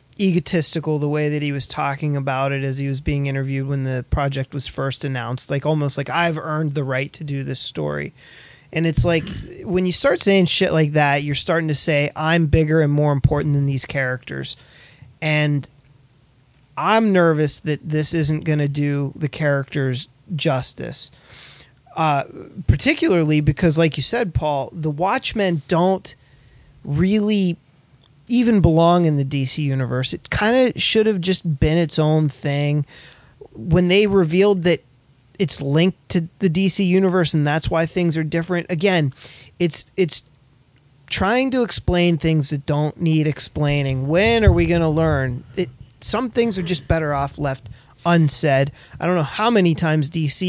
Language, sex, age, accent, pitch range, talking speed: English, male, 30-49, American, 140-175 Hz, 170 wpm